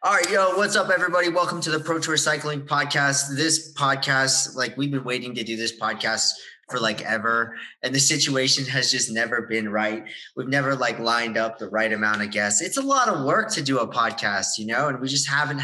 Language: English